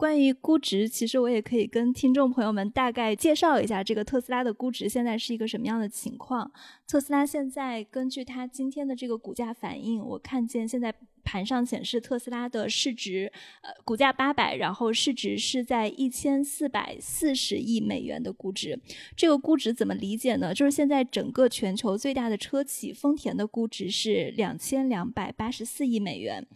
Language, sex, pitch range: Chinese, female, 225-270 Hz